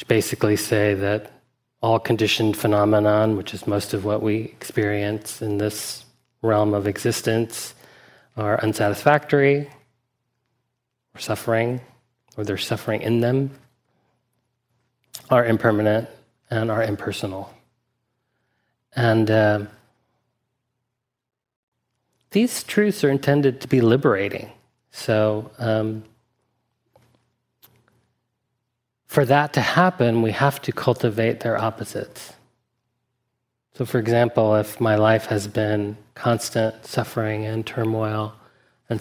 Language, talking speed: English, 100 wpm